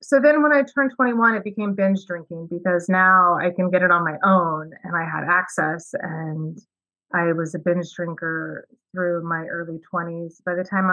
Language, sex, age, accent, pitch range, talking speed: English, female, 30-49, American, 170-205 Hz, 200 wpm